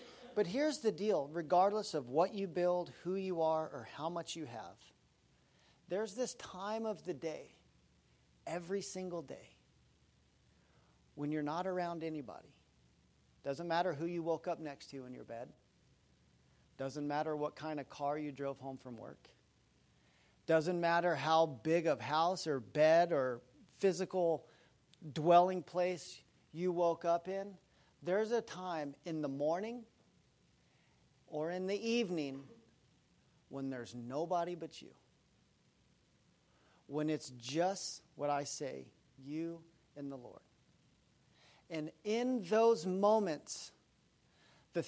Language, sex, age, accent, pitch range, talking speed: English, male, 40-59, American, 145-185 Hz, 130 wpm